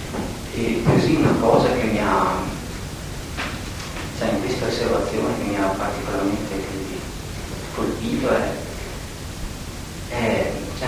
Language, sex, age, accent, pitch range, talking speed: Italian, male, 40-59, native, 95-120 Hz, 105 wpm